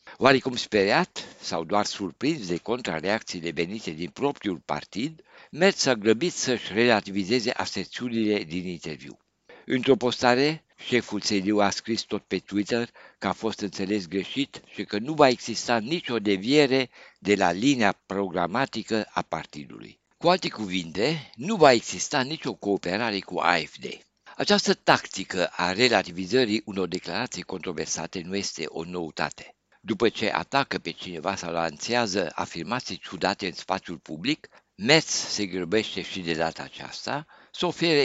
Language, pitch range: Romanian, 95-130 Hz